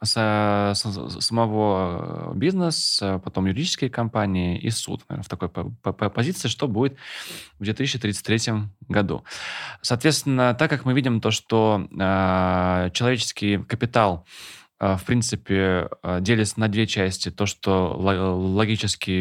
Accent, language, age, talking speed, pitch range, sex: native, Russian, 20-39, 105 wpm, 95-125 Hz, male